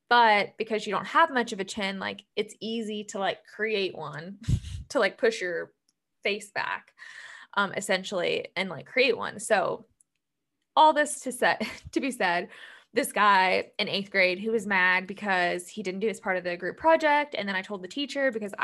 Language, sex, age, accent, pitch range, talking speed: English, female, 20-39, American, 195-265 Hz, 195 wpm